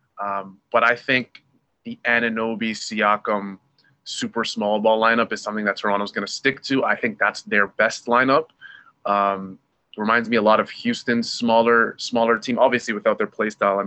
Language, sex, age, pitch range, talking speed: English, male, 20-39, 105-125 Hz, 175 wpm